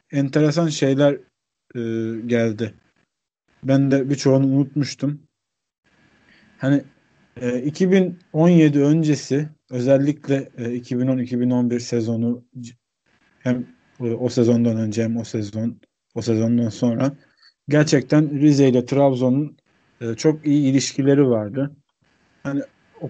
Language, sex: Turkish, male